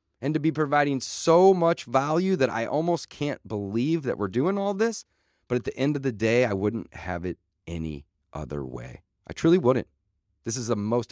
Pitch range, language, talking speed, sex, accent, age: 105-150 Hz, English, 205 wpm, male, American, 30-49